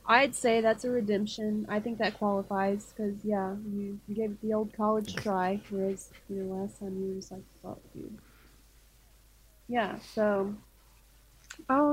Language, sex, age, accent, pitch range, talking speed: English, female, 20-39, American, 190-225 Hz, 155 wpm